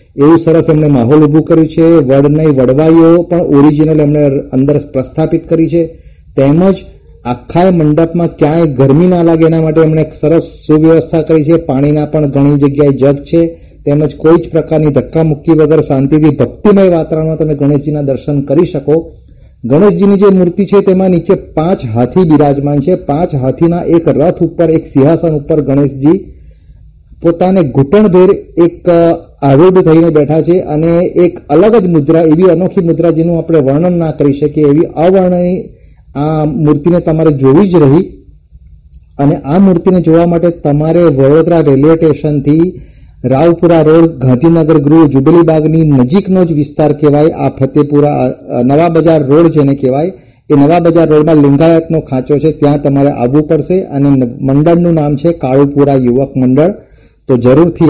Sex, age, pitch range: male, 40-59, 145-170 Hz